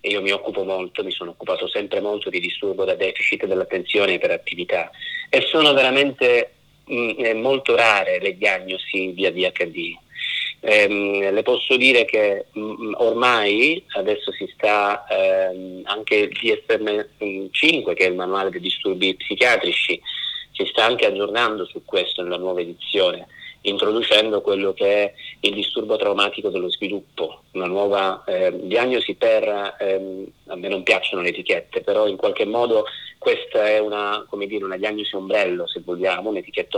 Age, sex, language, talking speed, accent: 30-49, male, Italian, 150 wpm, native